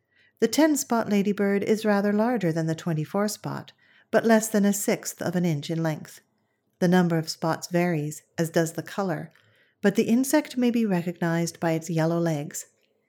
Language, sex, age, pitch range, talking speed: English, female, 40-59, 165-205 Hz, 175 wpm